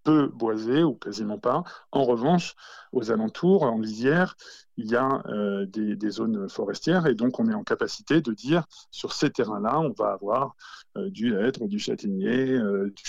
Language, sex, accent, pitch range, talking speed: French, male, French, 115-155 Hz, 185 wpm